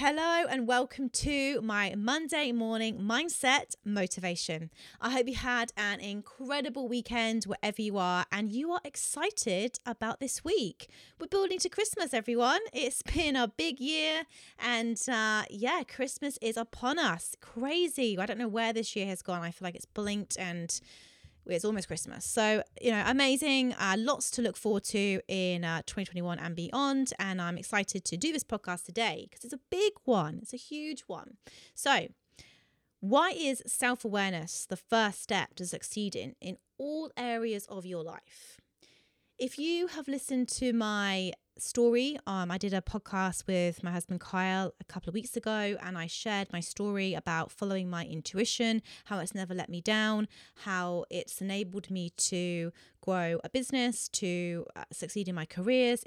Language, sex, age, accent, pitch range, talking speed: English, female, 20-39, British, 185-250 Hz, 170 wpm